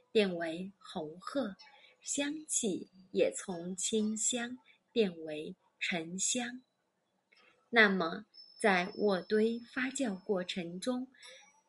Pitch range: 190-255 Hz